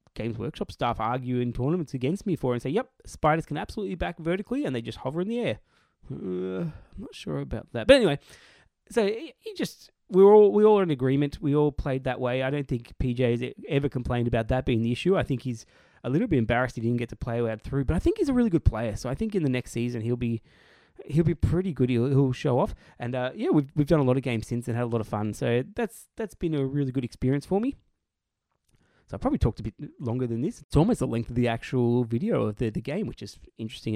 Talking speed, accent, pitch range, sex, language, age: 260 wpm, Australian, 120-170 Hz, male, English, 20-39